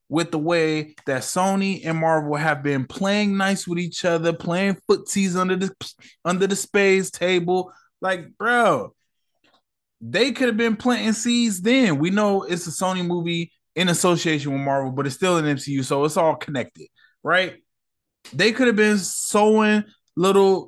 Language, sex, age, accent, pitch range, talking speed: English, male, 20-39, American, 145-200 Hz, 165 wpm